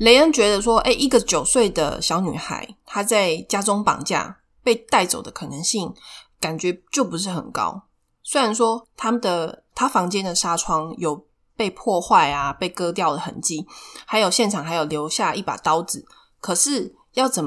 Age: 20-39